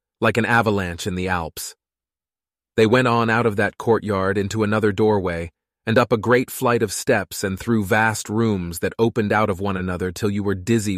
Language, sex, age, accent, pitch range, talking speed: English, male, 30-49, American, 95-115 Hz, 200 wpm